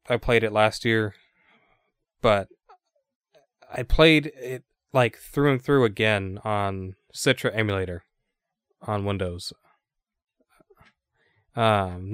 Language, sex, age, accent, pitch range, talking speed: English, male, 20-39, American, 100-130 Hz, 100 wpm